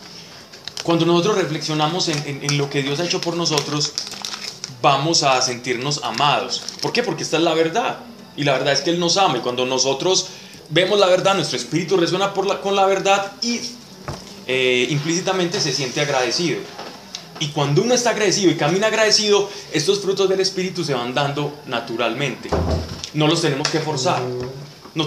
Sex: male